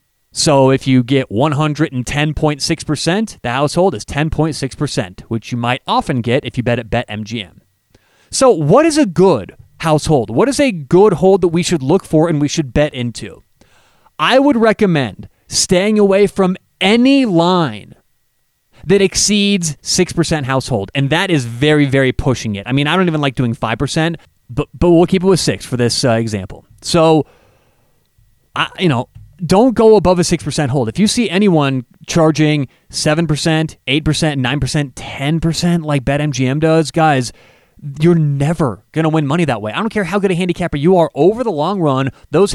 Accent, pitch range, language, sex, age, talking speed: American, 140-185 Hz, English, male, 30-49, 175 wpm